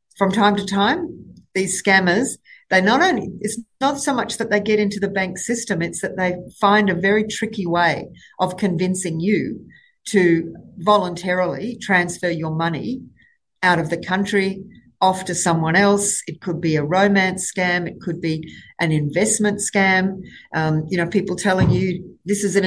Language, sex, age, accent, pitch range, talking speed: English, female, 50-69, Australian, 175-210 Hz, 170 wpm